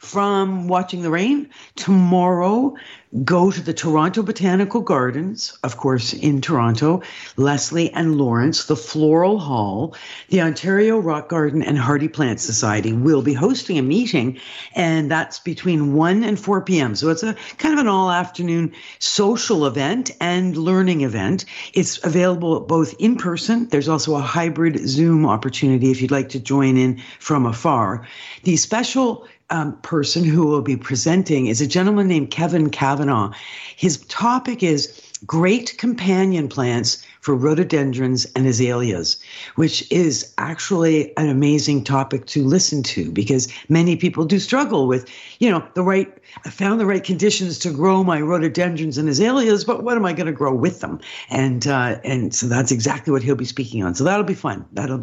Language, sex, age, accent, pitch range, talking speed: English, female, 50-69, American, 135-185 Hz, 165 wpm